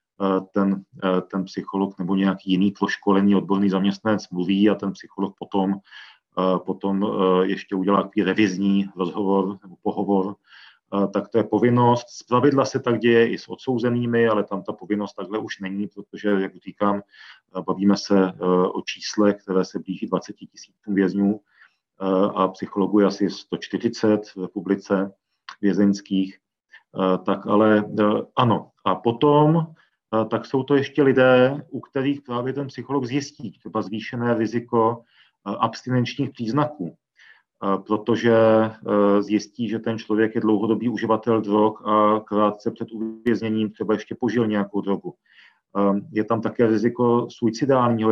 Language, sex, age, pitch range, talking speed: Czech, male, 40-59, 100-115 Hz, 130 wpm